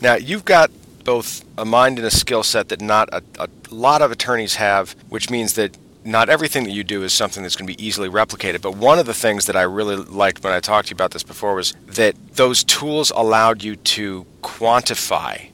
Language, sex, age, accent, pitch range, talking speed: English, male, 40-59, American, 95-120 Hz, 230 wpm